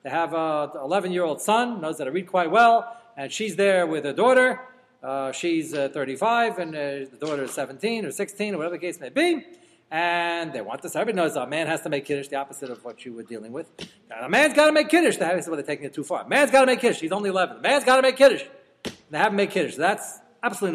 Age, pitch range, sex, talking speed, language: 40-59, 150-215 Hz, male, 270 wpm, English